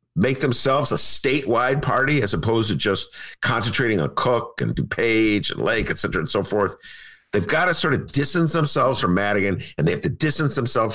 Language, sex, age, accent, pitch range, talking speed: English, male, 50-69, American, 110-145 Hz, 195 wpm